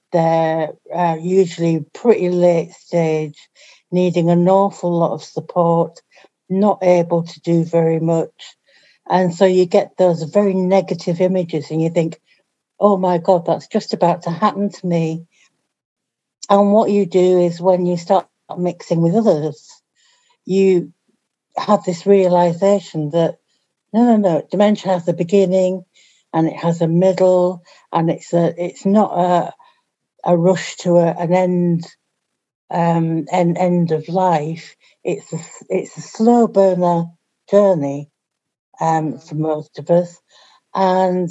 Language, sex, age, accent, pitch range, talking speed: English, female, 60-79, British, 165-190 Hz, 140 wpm